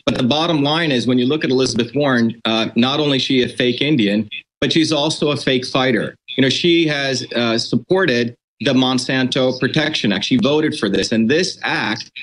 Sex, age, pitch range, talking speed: male, 40-59, 115-150 Hz, 205 wpm